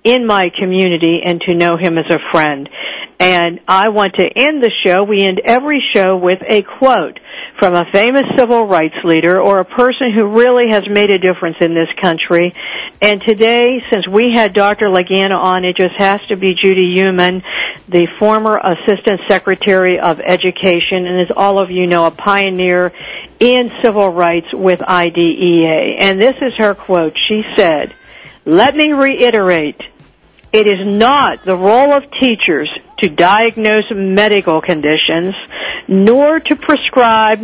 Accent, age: American, 60-79